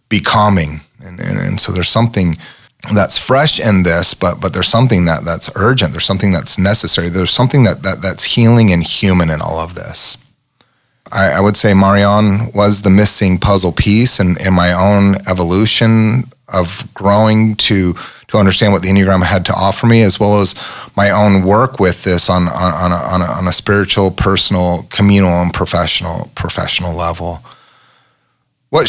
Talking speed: 180 wpm